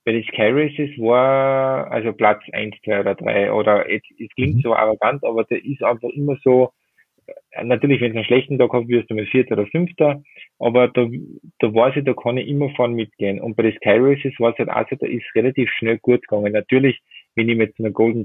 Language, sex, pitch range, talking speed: German, male, 110-130 Hz, 215 wpm